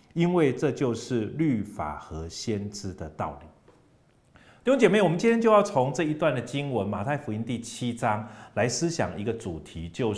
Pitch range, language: 110-170 Hz, Chinese